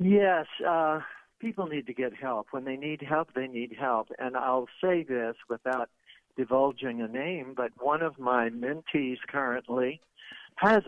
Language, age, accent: English, 60-79, American